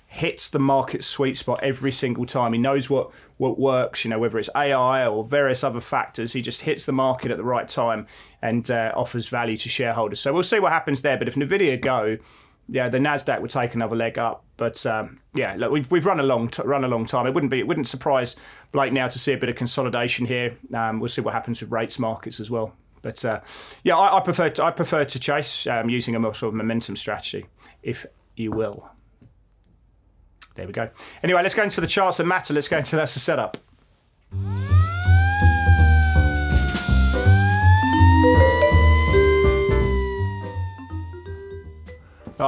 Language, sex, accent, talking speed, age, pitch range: English, male, British, 190 wpm, 30-49, 105-135 Hz